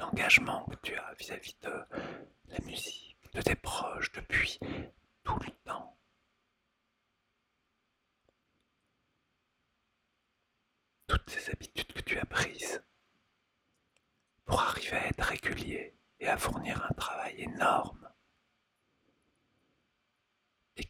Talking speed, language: 100 wpm, French